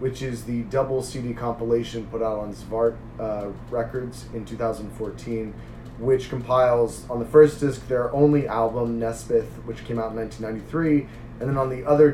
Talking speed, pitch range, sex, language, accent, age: 170 wpm, 115-130 Hz, male, English, American, 30-49